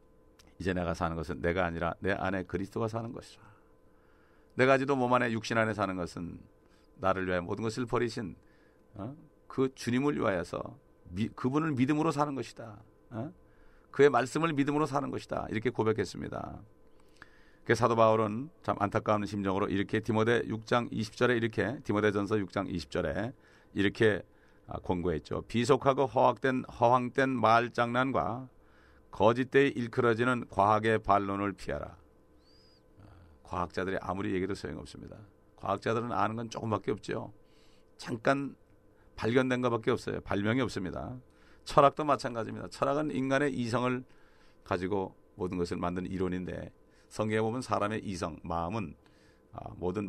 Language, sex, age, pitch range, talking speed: English, male, 40-59, 90-120 Hz, 115 wpm